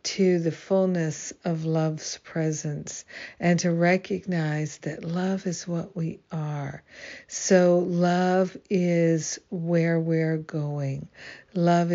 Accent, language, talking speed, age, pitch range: American, English, 110 wpm, 60-79, 155-180 Hz